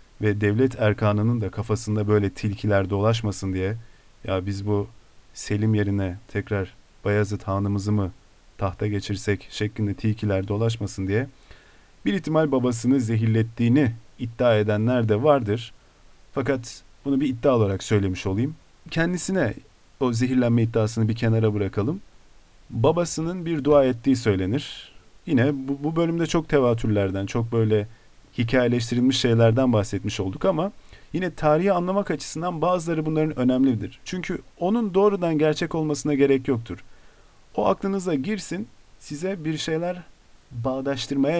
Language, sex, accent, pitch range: Turkish, male, native, 105-140 Hz